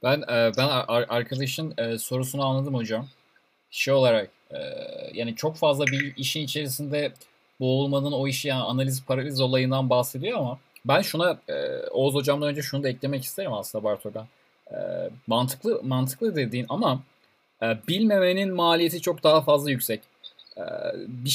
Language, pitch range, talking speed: Turkish, 120-145 Hz, 125 wpm